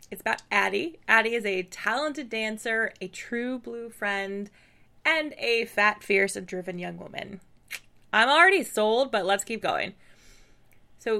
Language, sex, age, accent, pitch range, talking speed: English, female, 20-39, American, 205-270 Hz, 150 wpm